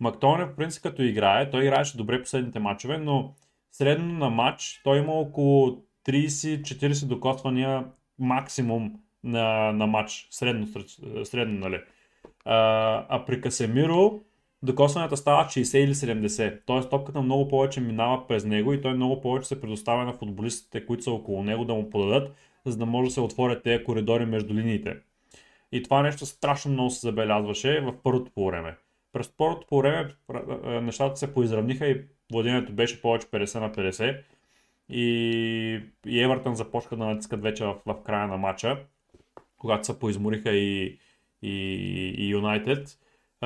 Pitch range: 110-135 Hz